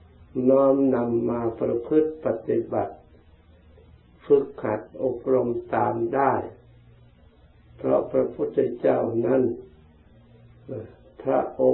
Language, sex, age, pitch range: Thai, male, 60-79, 80-130 Hz